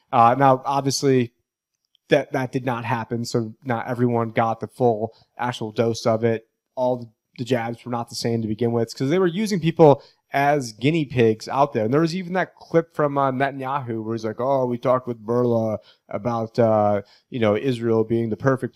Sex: male